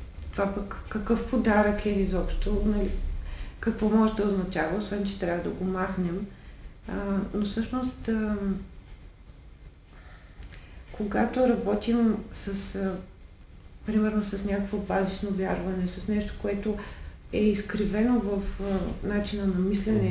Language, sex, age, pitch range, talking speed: Bulgarian, female, 40-59, 190-215 Hz, 120 wpm